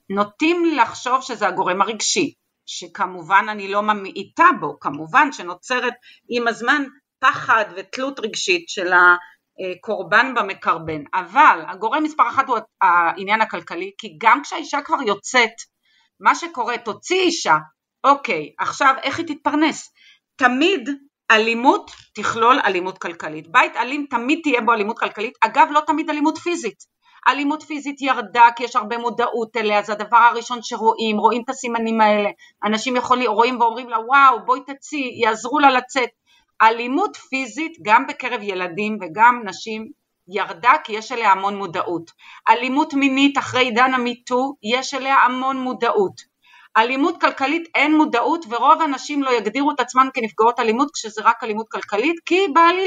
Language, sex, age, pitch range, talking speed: Hebrew, female, 40-59, 220-295 Hz, 140 wpm